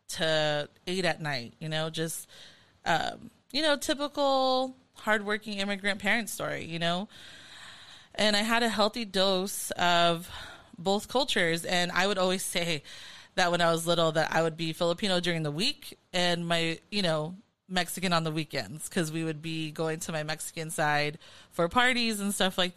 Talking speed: 175 wpm